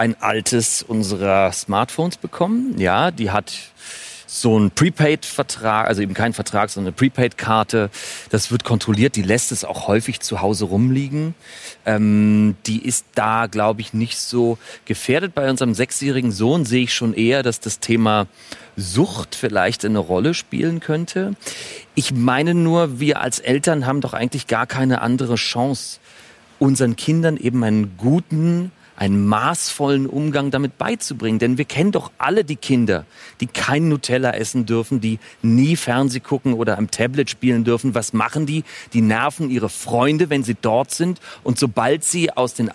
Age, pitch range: 40-59, 115-150 Hz